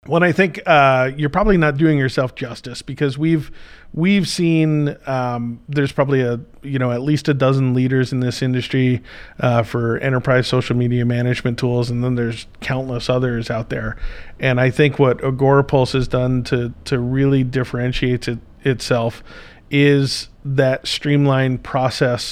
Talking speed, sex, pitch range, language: 160 wpm, male, 120-135 Hz, English